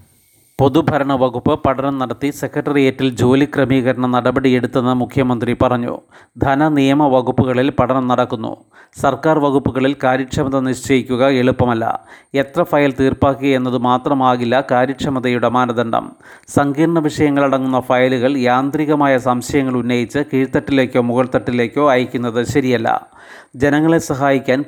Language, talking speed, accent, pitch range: Malayalam, 95 wpm, native, 125-140 Hz